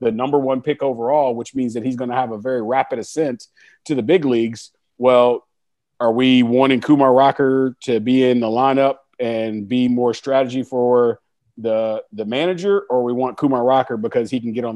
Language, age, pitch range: English, 40-59, 110-130 Hz